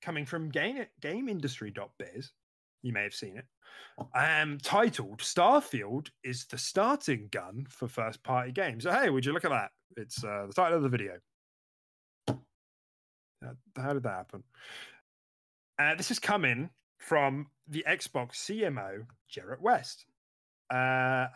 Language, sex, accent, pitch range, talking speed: English, male, British, 120-170 Hz, 130 wpm